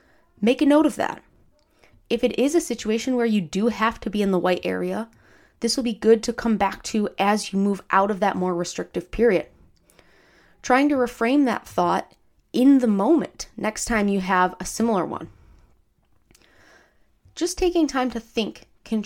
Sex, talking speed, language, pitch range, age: female, 185 wpm, English, 200-235 Hz, 20-39